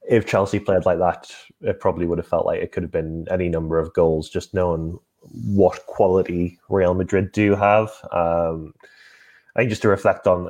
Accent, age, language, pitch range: British, 10-29, English, 85-100 Hz